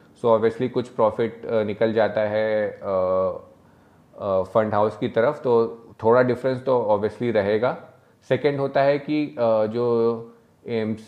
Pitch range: 110-130 Hz